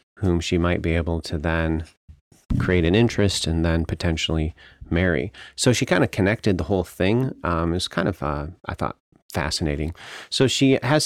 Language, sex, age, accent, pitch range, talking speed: English, male, 30-49, American, 80-100 Hz, 185 wpm